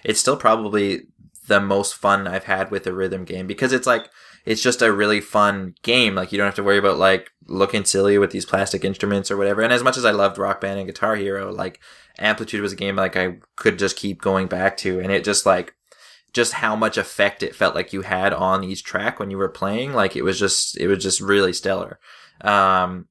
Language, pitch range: English, 95-105 Hz